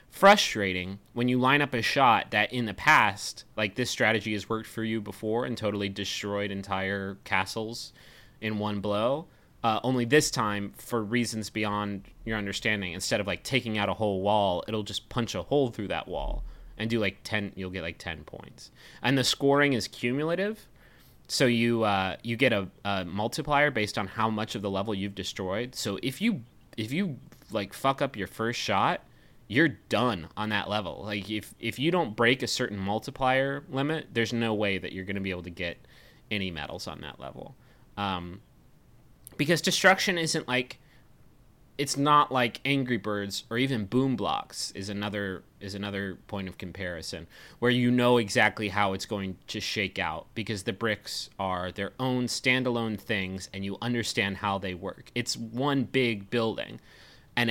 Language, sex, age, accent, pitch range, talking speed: English, male, 30-49, American, 100-125 Hz, 185 wpm